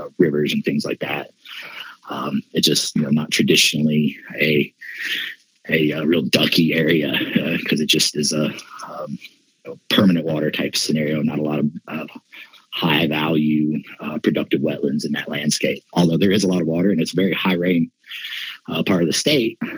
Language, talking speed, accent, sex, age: English, 180 wpm, American, male, 30-49